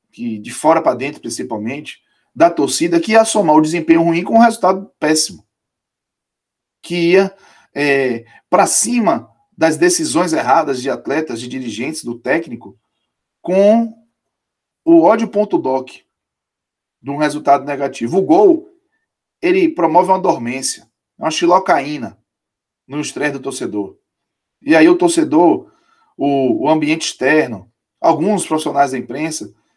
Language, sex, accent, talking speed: Portuguese, male, Brazilian, 130 wpm